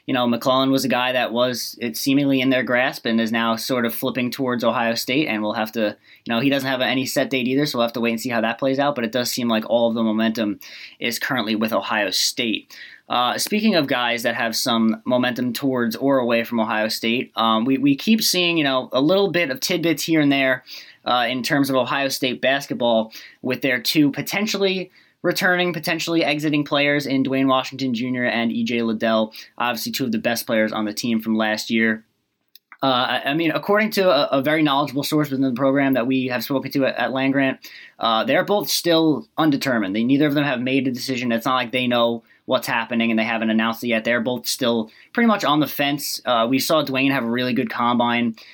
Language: English